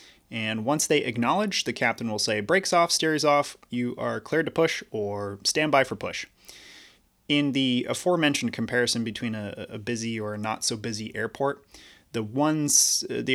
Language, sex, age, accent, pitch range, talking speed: English, male, 20-39, American, 115-140 Hz, 175 wpm